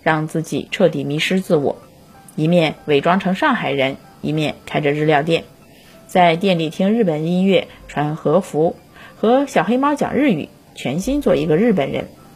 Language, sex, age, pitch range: Chinese, female, 20-39, 155-200 Hz